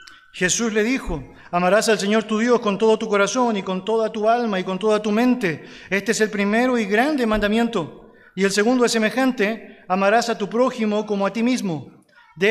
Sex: male